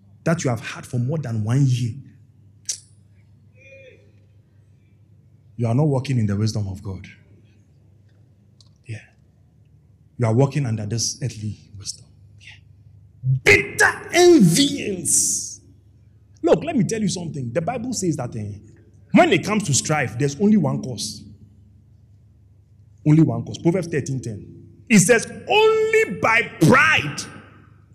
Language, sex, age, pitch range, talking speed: English, male, 30-49, 105-155 Hz, 125 wpm